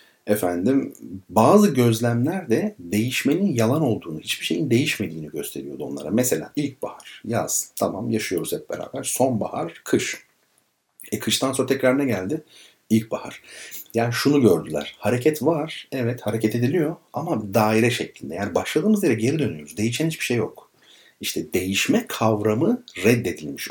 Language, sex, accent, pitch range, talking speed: Turkish, male, native, 105-135 Hz, 130 wpm